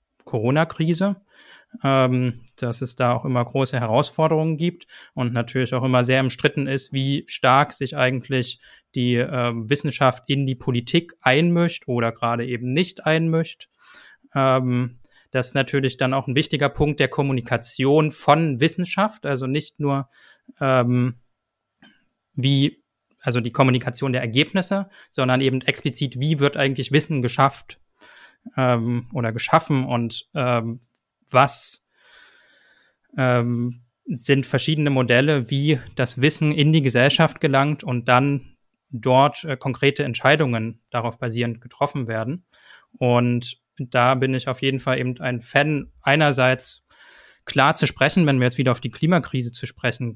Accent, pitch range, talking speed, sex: German, 125-150 Hz, 135 wpm, male